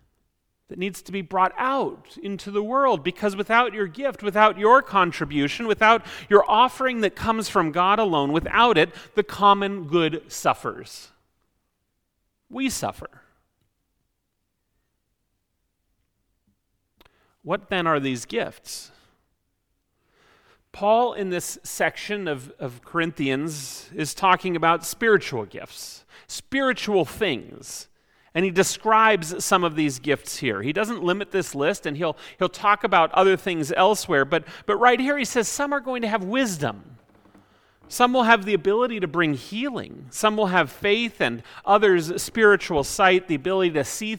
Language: English